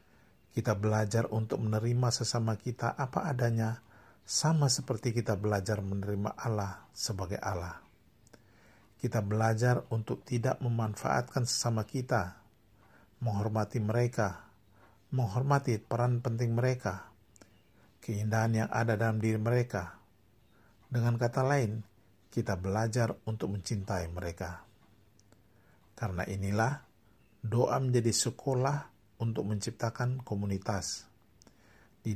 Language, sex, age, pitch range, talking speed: Indonesian, male, 50-69, 105-120 Hz, 95 wpm